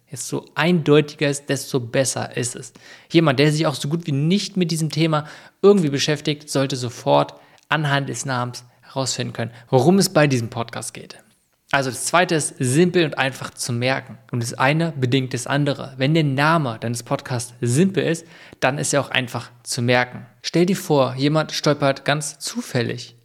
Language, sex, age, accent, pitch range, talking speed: German, male, 20-39, German, 125-155 Hz, 180 wpm